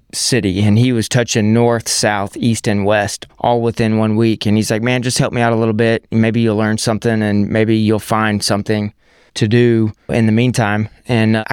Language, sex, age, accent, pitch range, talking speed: English, male, 20-39, American, 110-120 Hz, 215 wpm